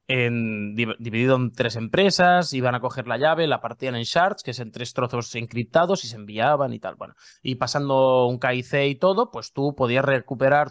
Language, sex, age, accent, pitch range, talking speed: Spanish, male, 20-39, Spanish, 120-150 Hz, 200 wpm